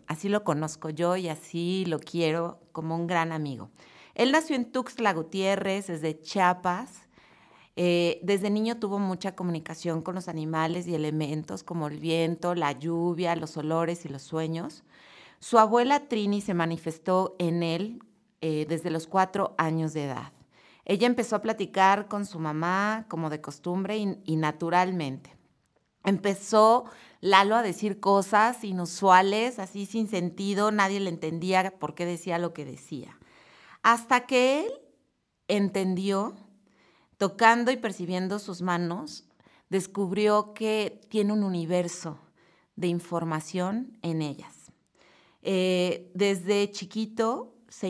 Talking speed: 135 wpm